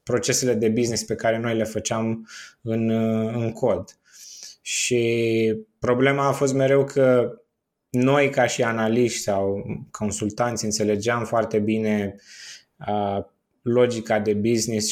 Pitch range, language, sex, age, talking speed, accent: 110-130 Hz, Romanian, male, 20-39, 120 wpm, native